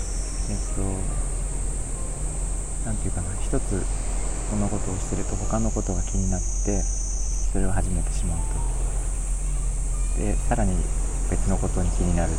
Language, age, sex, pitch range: Japanese, 40-59, male, 80-100 Hz